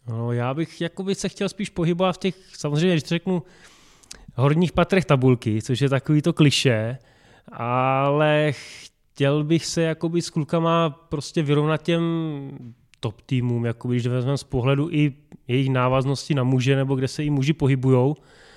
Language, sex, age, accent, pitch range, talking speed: Czech, male, 20-39, native, 135-155 Hz, 150 wpm